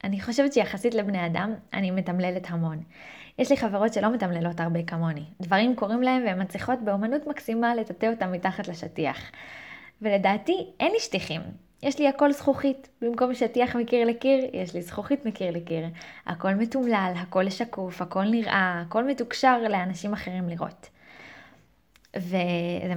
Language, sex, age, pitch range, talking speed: Hebrew, female, 20-39, 180-235 Hz, 145 wpm